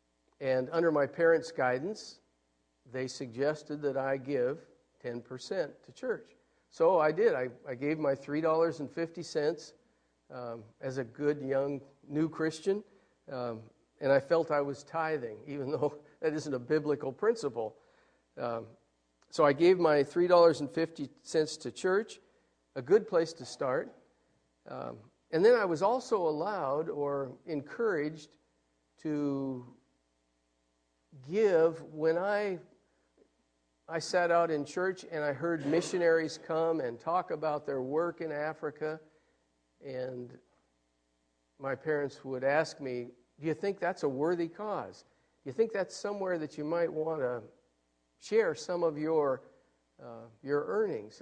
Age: 50-69